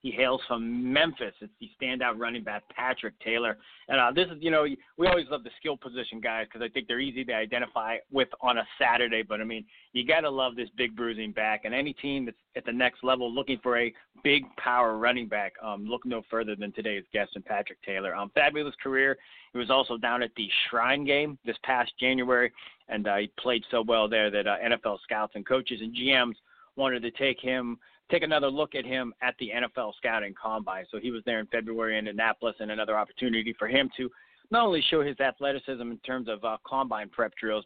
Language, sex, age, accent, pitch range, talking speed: English, male, 30-49, American, 110-135 Hz, 225 wpm